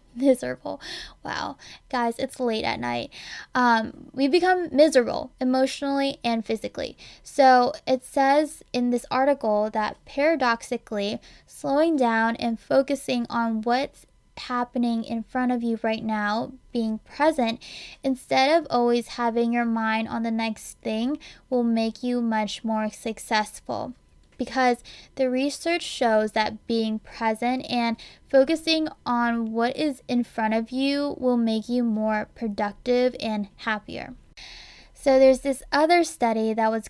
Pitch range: 225-265 Hz